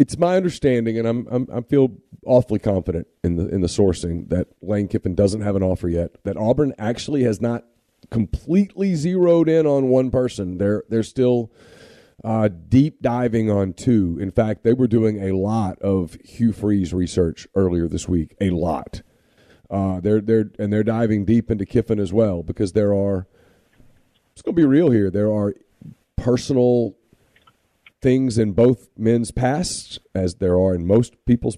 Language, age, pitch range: English, 40-59, 95-115 Hz